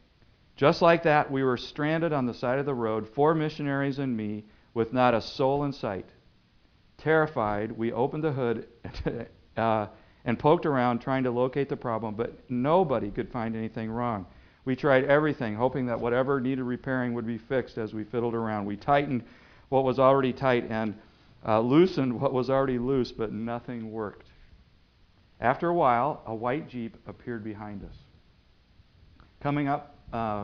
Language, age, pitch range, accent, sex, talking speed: English, 50-69, 110-135 Hz, American, male, 165 wpm